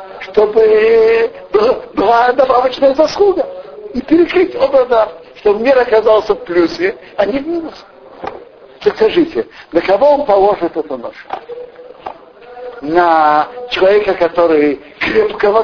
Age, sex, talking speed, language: 50-69, male, 110 wpm, Russian